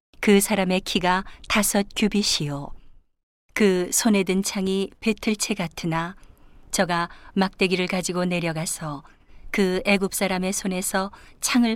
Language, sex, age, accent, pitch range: Korean, female, 40-59, native, 170-200 Hz